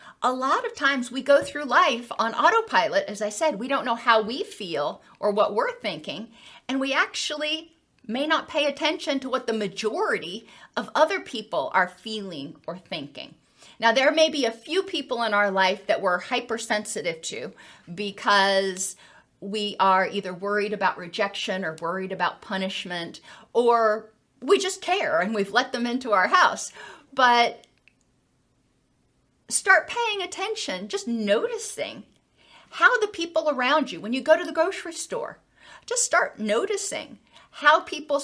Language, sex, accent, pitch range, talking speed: English, female, American, 205-310 Hz, 155 wpm